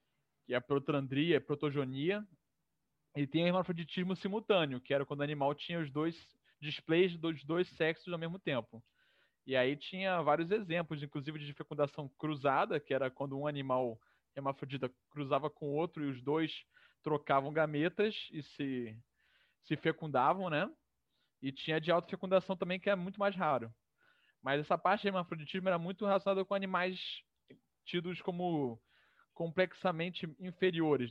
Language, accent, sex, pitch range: Portuguese, Brazilian, male, 140-175 Hz